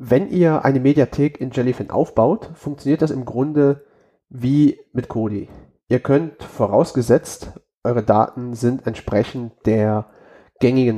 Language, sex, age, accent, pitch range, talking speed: German, male, 30-49, German, 115-140 Hz, 125 wpm